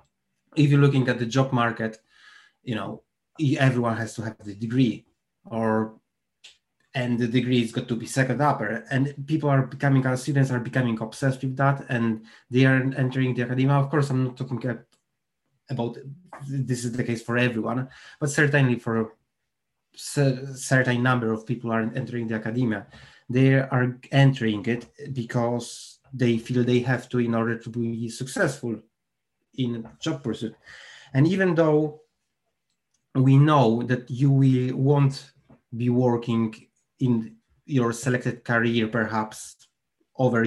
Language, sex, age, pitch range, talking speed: English, male, 20-39, 115-135 Hz, 150 wpm